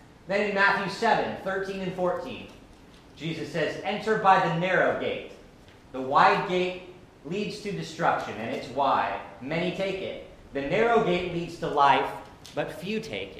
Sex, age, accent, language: male, 40-59, American, English